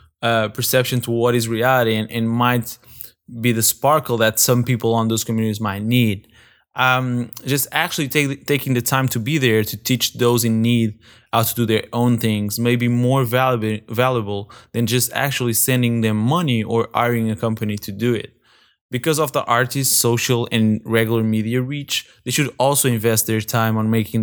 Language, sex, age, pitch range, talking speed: English, male, 20-39, 110-125 Hz, 190 wpm